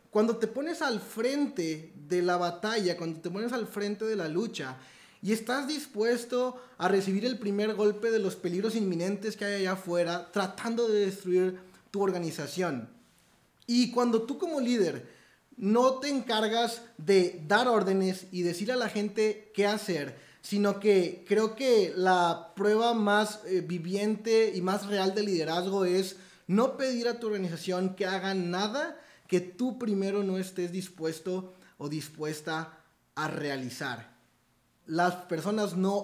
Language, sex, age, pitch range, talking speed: Spanish, male, 30-49, 170-215 Hz, 150 wpm